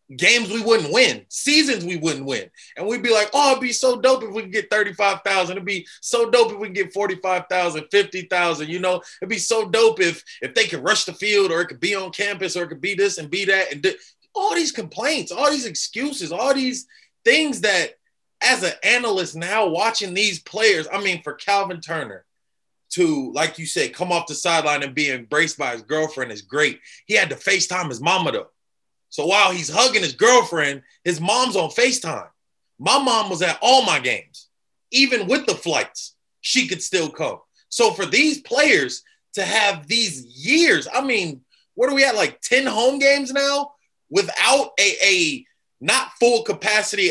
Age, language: 20-39, English